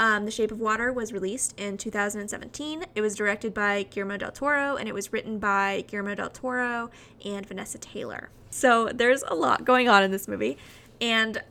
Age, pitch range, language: 20-39, 210-245 Hz, English